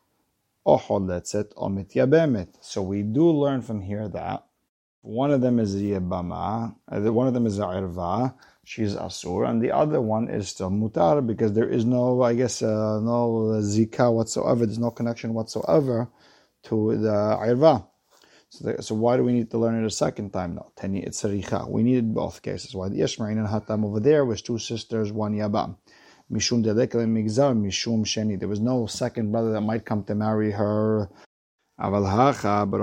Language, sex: English, male